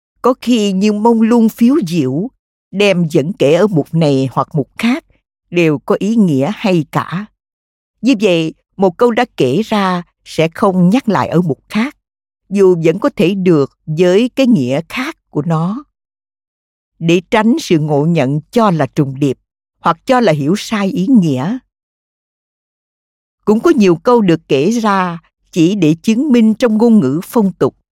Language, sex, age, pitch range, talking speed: Vietnamese, female, 50-69, 150-220 Hz, 170 wpm